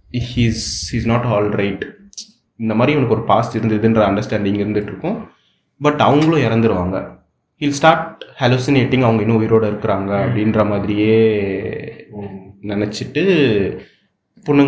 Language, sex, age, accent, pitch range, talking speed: Tamil, male, 20-39, native, 100-130 Hz, 145 wpm